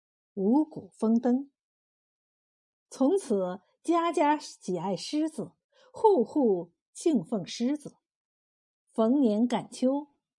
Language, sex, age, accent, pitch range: Chinese, female, 50-69, native, 215-315 Hz